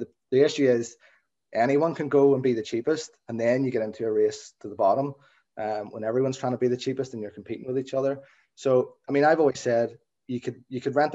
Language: English